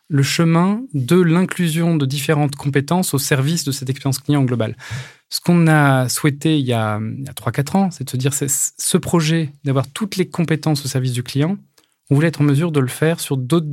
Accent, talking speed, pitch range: French, 215 wpm, 125-155 Hz